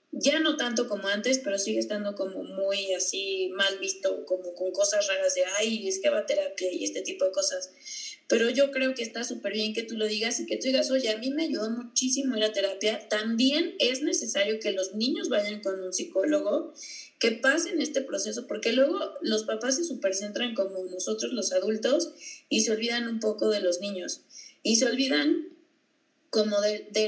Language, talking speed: Spanish, 195 wpm